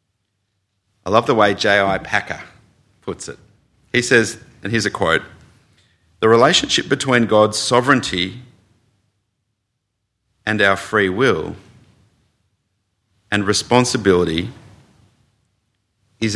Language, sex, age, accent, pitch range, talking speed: English, male, 40-59, Australian, 100-120 Hz, 95 wpm